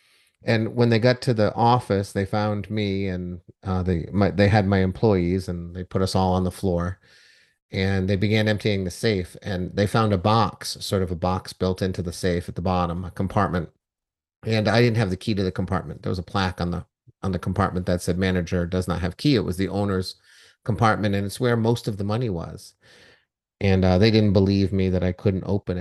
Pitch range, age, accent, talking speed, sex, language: 90-105 Hz, 30-49, American, 230 wpm, male, English